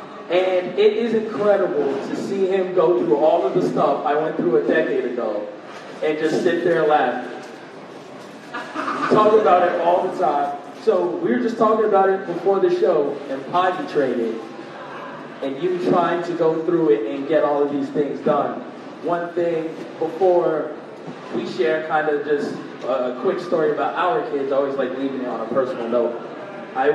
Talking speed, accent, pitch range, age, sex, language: 180 wpm, American, 140-215 Hz, 30-49, male, English